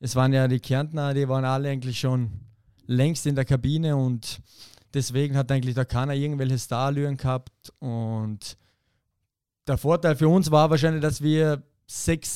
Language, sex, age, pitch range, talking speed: German, male, 20-39, 130-160 Hz, 160 wpm